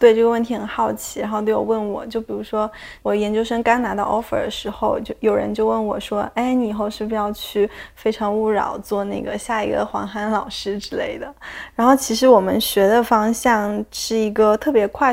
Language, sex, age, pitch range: Chinese, female, 20-39, 200-225 Hz